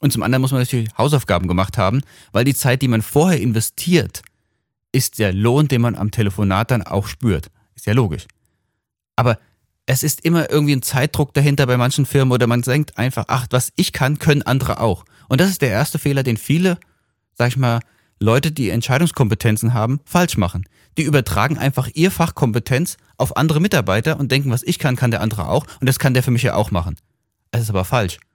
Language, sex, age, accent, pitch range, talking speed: German, male, 30-49, German, 105-130 Hz, 205 wpm